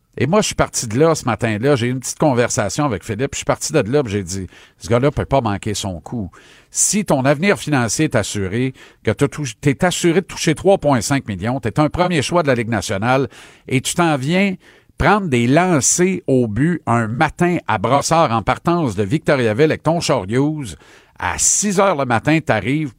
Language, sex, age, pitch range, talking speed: French, male, 50-69, 115-160 Hz, 210 wpm